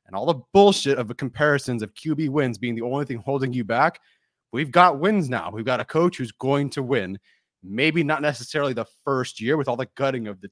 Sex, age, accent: male, 30-49, American